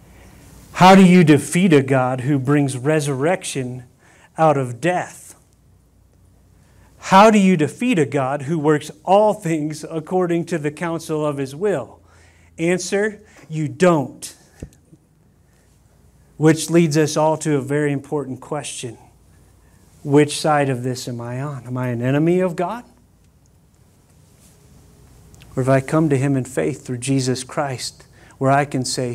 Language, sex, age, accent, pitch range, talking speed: English, male, 40-59, American, 125-155 Hz, 140 wpm